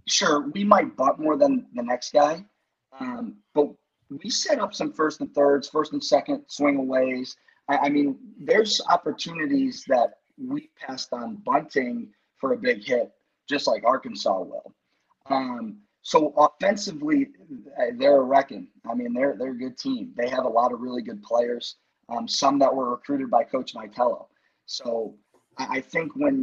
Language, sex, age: English, male, 30-49